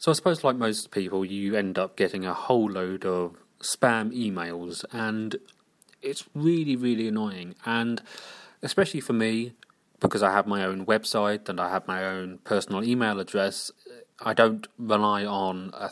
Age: 30-49